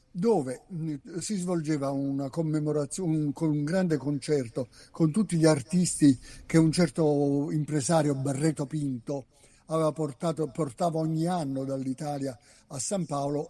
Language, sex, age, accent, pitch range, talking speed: Italian, male, 60-79, native, 140-180 Hz, 115 wpm